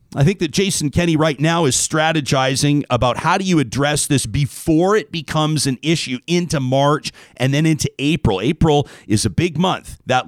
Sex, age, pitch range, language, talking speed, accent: male, 40-59, 130-175 Hz, English, 185 wpm, American